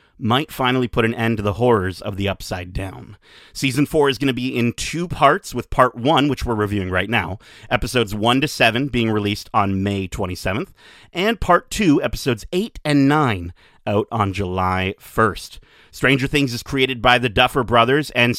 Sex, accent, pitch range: male, American, 105-135 Hz